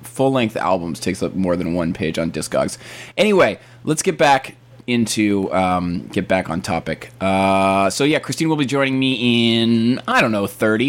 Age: 20-39